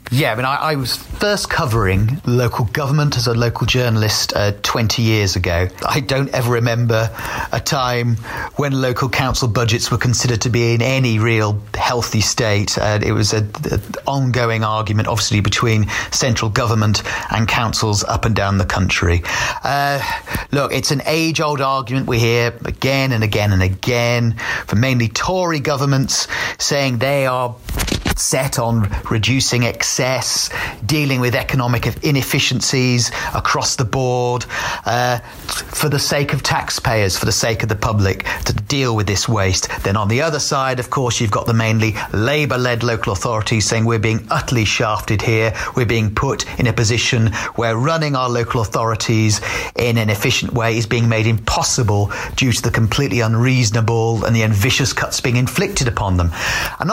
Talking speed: 165 wpm